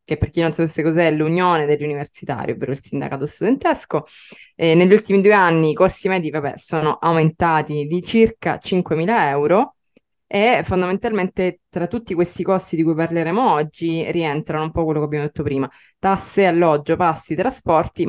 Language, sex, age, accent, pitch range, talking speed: Italian, female, 20-39, native, 150-180 Hz, 165 wpm